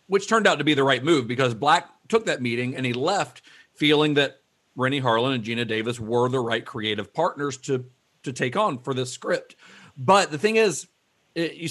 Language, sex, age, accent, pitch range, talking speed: English, male, 40-59, American, 120-165 Hz, 210 wpm